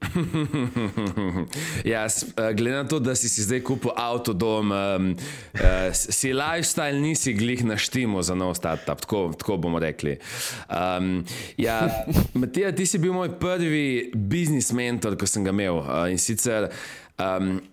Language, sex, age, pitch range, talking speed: English, male, 20-39, 105-140 Hz, 145 wpm